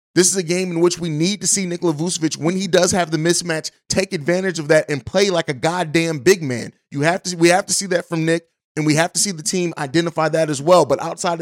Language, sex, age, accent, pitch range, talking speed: English, male, 30-49, American, 160-190 Hz, 275 wpm